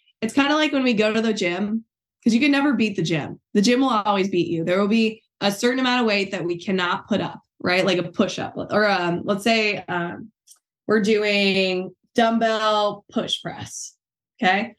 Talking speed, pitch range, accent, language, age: 205 wpm, 195-245 Hz, American, English, 20-39